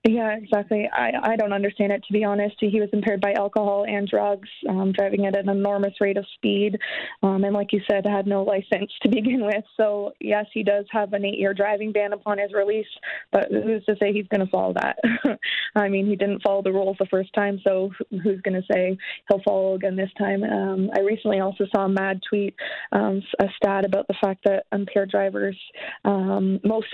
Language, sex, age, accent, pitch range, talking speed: English, female, 20-39, American, 190-205 Hz, 215 wpm